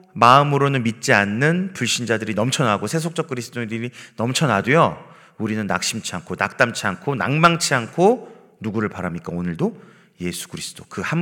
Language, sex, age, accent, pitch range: Korean, male, 40-59, native, 95-140 Hz